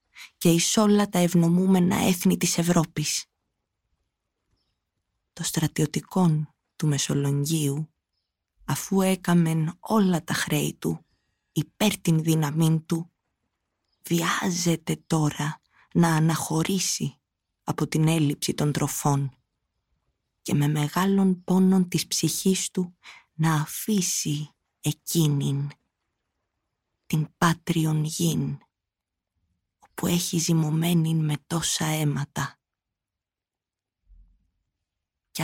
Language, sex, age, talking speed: Greek, female, 20-39, 85 wpm